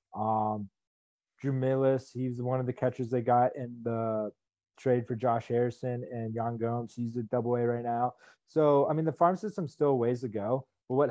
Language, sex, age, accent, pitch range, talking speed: English, male, 20-39, American, 115-130 Hz, 205 wpm